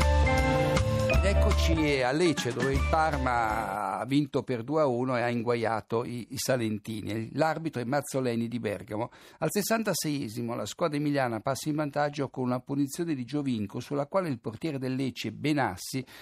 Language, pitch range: Italian, 115-150 Hz